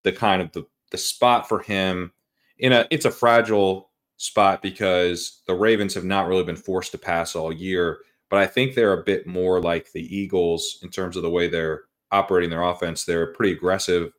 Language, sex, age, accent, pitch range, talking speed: English, male, 30-49, American, 85-105 Hz, 205 wpm